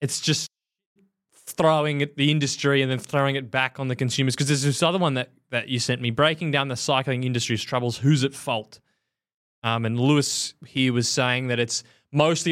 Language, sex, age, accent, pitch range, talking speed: English, male, 20-39, Australian, 135-185 Hz, 200 wpm